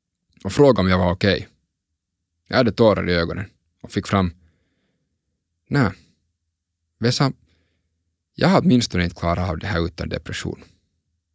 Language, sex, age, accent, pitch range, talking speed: Swedish, male, 30-49, Finnish, 85-110 Hz, 135 wpm